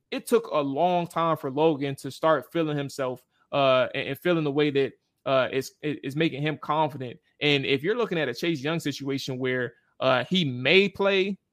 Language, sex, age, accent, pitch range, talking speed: English, male, 20-39, American, 130-160 Hz, 185 wpm